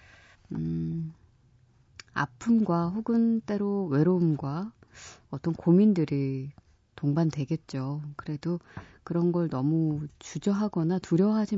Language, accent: Korean, native